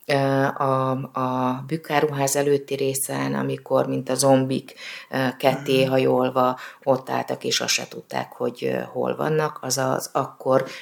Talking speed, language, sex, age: 120 wpm, Hungarian, female, 30-49